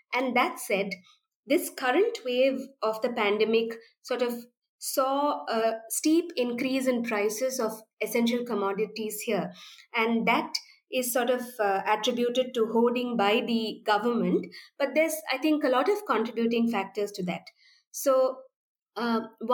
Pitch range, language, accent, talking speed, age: 215-265 Hz, English, Indian, 140 wpm, 20-39